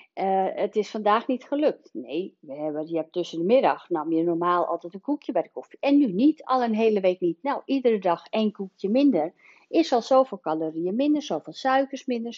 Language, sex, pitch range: Dutch, female, 180-260 Hz